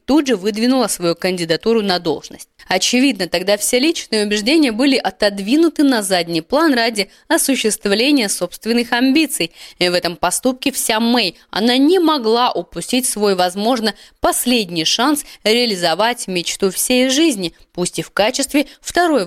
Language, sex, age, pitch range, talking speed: Russian, female, 20-39, 185-255 Hz, 135 wpm